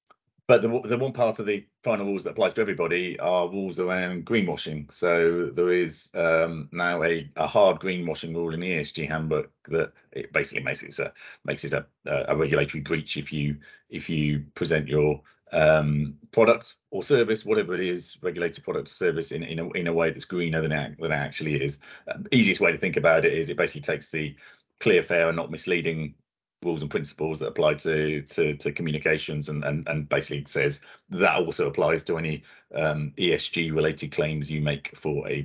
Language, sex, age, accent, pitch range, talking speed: English, male, 40-59, British, 75-90 Hz, 205 wpm